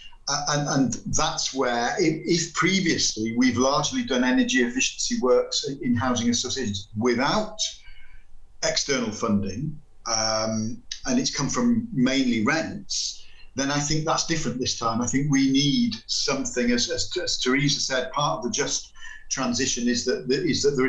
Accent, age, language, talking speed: British, 50-69, English, 155 wpm